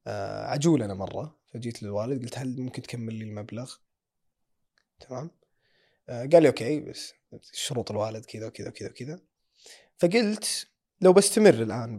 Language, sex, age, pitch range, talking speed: Arabic, male, 20-39, 115-175 Hz, 135 wpm